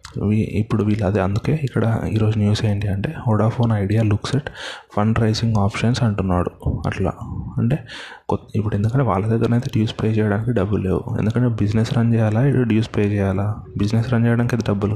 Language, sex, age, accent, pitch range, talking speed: Telugu, male, 20-39, native, 100-115 Hz, 165 wpm